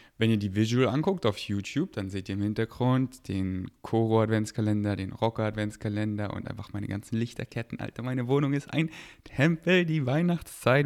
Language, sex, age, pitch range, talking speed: German, male, 20-39, 105-130 Hz, 160 wpm